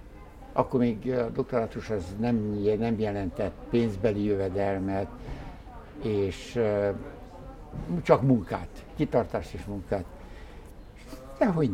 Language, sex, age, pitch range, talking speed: Hungarian, male, 60-79, 100-130 Hz, 90 wpm